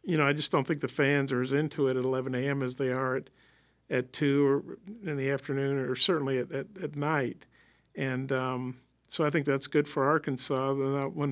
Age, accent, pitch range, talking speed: 50-69, American, 135-155 Hz, 210 wpm